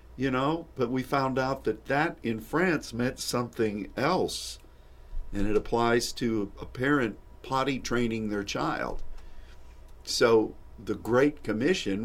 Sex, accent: male, American